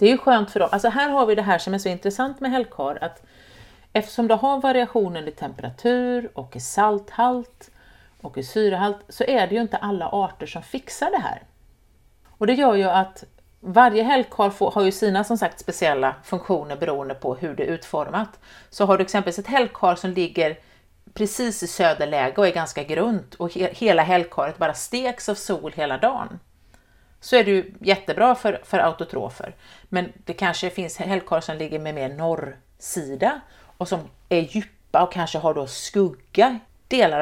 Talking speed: 185 wpm